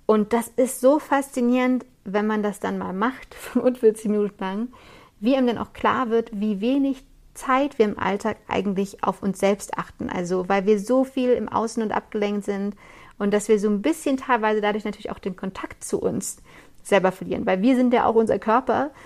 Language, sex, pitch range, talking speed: German, female, 200-240 Hz, 200 wpm